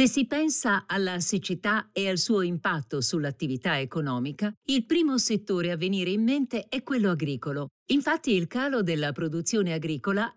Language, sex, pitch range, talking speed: Italian, female, 175-240 Hz, 155 wpm